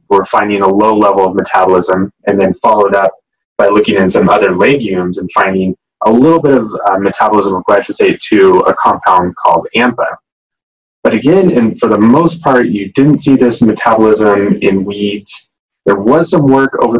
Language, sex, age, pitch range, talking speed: English, male, 20-39, 95-130 Hz, 175 wpm